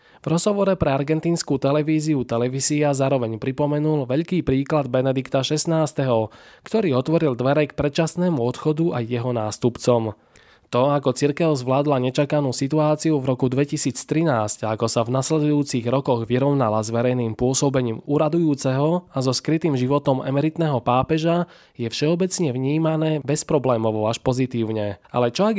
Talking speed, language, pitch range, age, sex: 130 wpm, Slovak, 120-155 Hz, 20-39, male